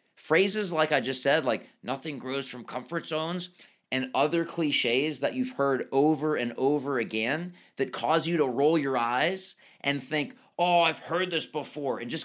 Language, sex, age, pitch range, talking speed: English, male, 30-49, 130-180 Hz, 180 wpm